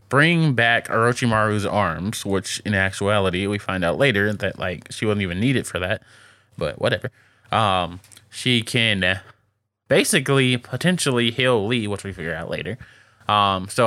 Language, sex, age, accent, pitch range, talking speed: English, male, 20-39, American, 100-125 Hz, 155 wpm